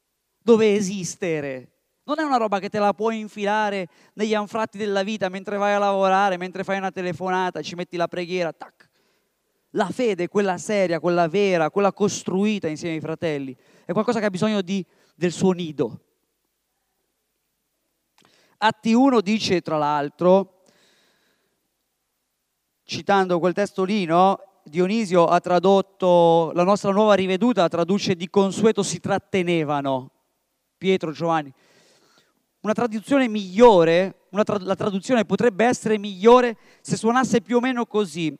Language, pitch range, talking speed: Italian, 175-215 Hz, 135 wpm